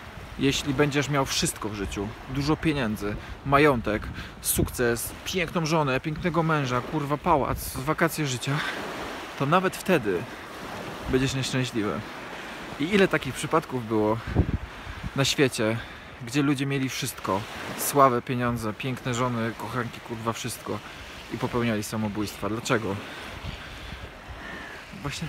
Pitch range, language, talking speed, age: 110-150 Hz, Polish, 110 wpm, 20-39